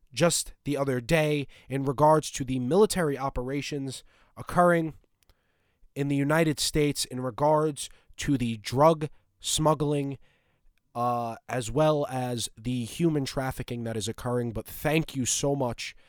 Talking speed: 135 wpm